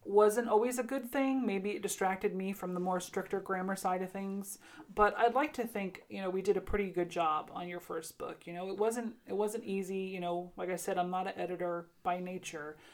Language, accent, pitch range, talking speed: English, American, 180-215 Hz, 240 wpm